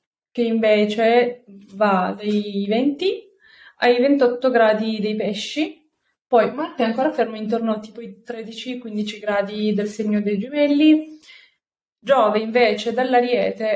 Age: 20-39